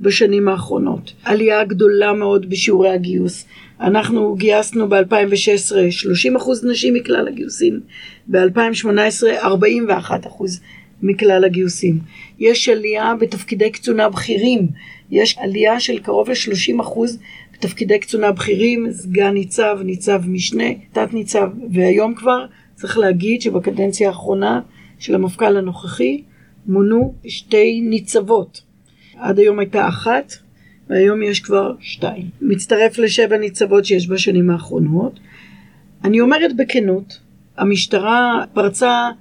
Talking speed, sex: 105 wpm, female